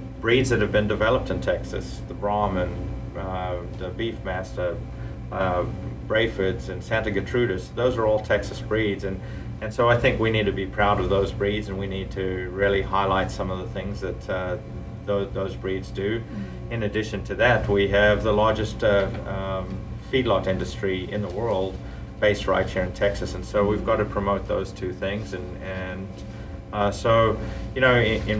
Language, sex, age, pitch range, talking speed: English, male, 30-49, 95-110 Hz, 185 wpm